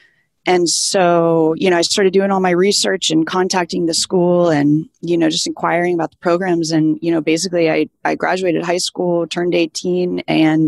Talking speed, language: 190 wpm, English